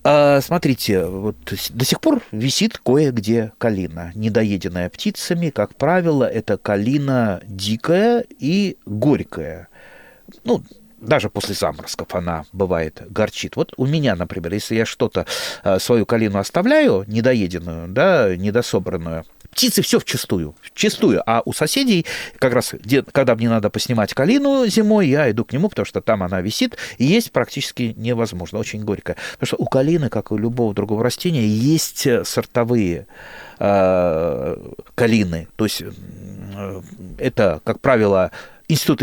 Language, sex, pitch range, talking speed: Russian, male, 100-160 Hz, 135 wpm